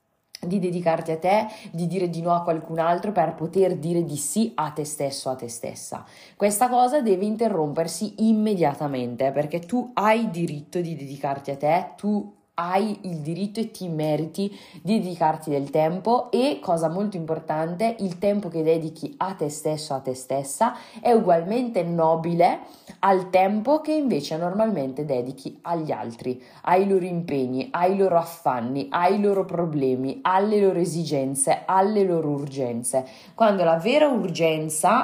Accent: native